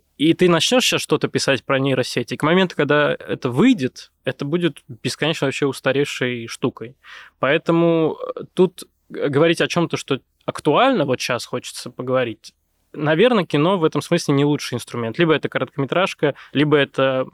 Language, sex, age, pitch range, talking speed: Russian, male, 20-39, 125-155 Hz, 150 wpm